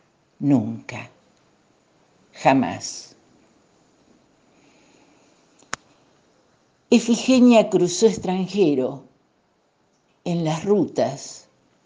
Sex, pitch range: female, 135-200 Hz